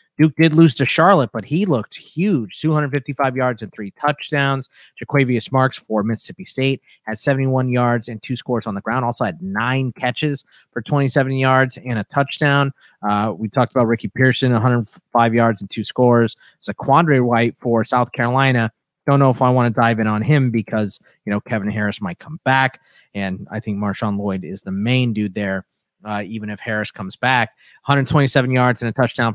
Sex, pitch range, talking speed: male, 110-135 Hz, 190 wpm